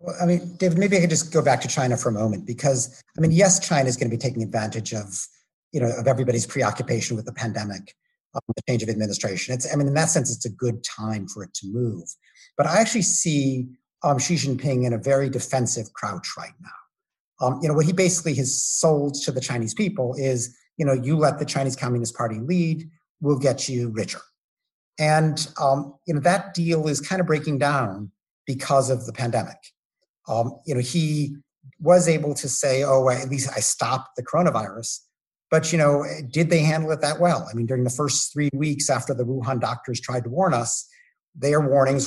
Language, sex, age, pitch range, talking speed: English, male, 50-69, 120-155 Hz, 215 wpm